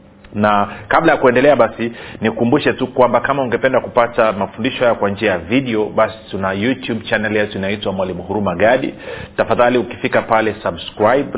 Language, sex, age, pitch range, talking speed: Swahili, male, 40-59, 100-115 Hz, 160 wpm